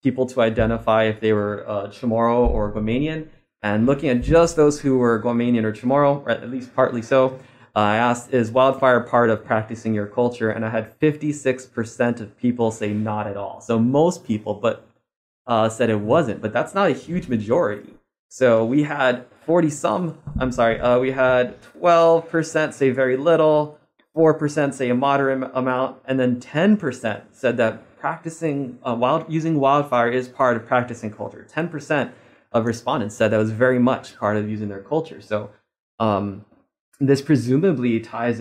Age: 20-39